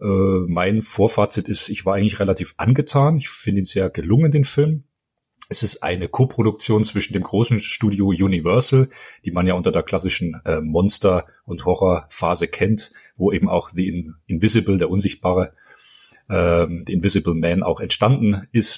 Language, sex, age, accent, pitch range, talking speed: German, male, 40-59, German, 90-125 Hz, 165 wpm